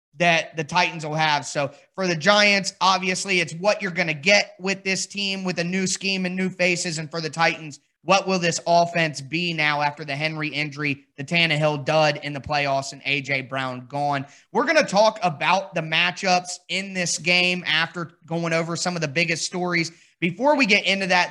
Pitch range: 165-190 Hz